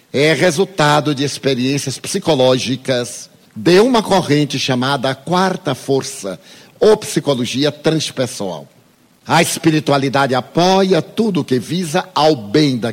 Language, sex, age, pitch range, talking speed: Portuguese, male, 60-79, 130-180 Hz, 115 wpm